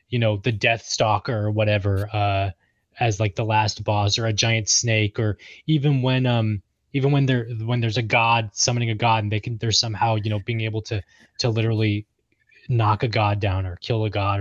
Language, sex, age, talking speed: English, male, 20-39, 210 wpm